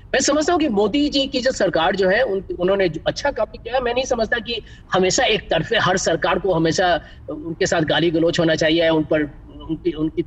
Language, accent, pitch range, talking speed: Hindi, native, 155-205 Hz, 215 wpm